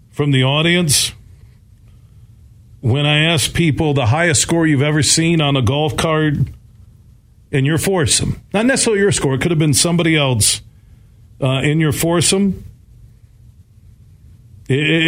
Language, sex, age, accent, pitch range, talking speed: English, male, 50-69, American, 110-150 Hz, 135 wpm